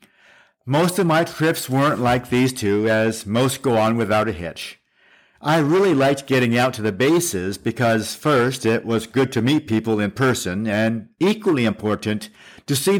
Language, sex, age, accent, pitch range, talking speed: English, male, 50-69, American, 105-135 Hz, 175 wpm